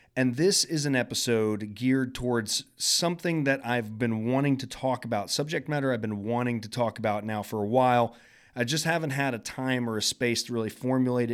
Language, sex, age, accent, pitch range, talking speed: English, male, 30-49, American, 110-135 Hz, 205 wpm